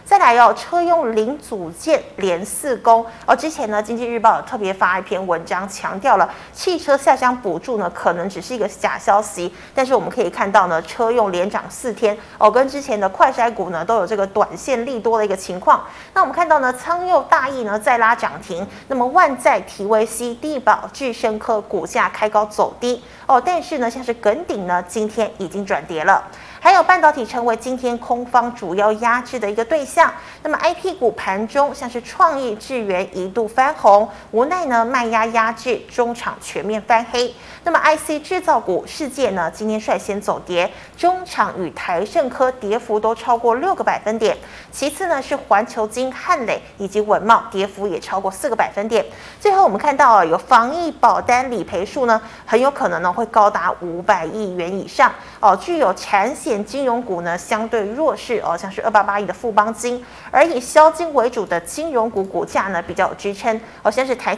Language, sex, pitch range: Chinese, female, 210-270 Hz